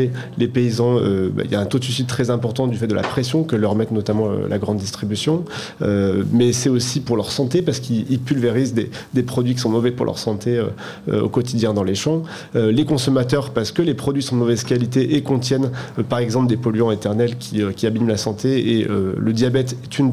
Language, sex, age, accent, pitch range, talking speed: French, male, 30-49, French, 110-135 Hz, 245 wpm